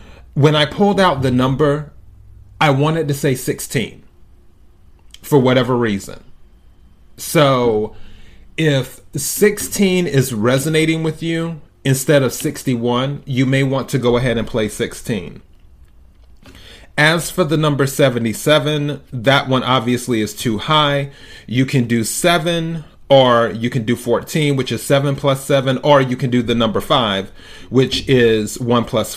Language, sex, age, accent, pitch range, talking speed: English, male, 30-49, American, 105-145 Hz, 140 wpm